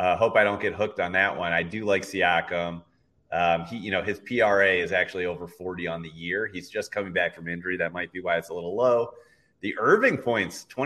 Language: English